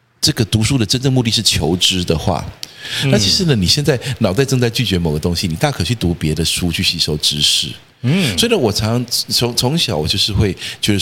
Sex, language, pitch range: male, Chinese, 90-125 Hz